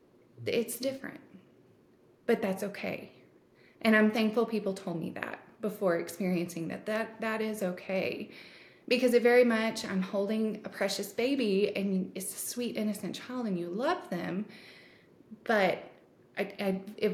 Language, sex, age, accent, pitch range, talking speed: English, female, 20-39, American, 185-230 Hz, 145 wpm